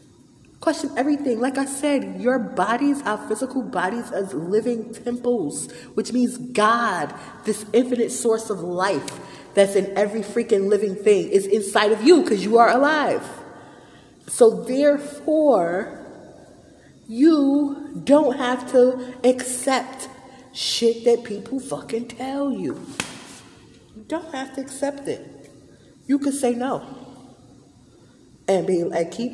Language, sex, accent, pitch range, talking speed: English, female, American, 155-240 Hz, 125 wpm